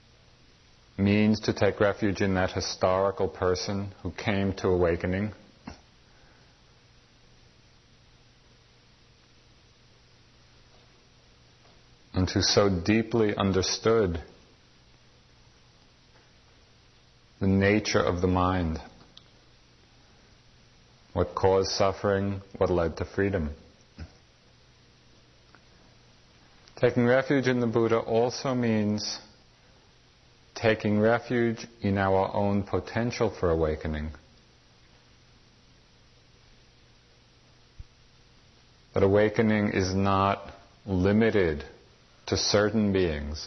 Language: English